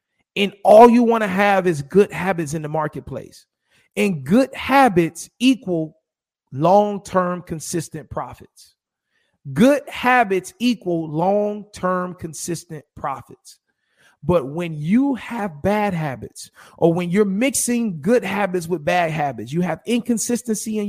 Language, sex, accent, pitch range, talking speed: English, male, American, 155-205 Hz, 125 wpm